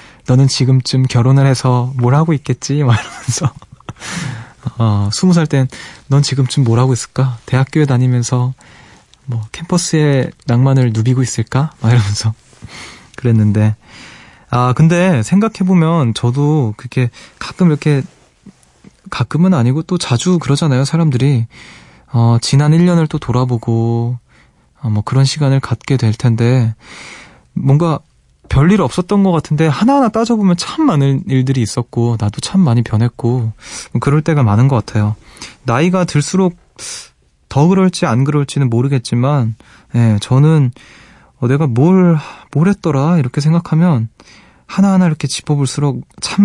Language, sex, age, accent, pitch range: Korean, male, 20-39, native, 120-155 Hz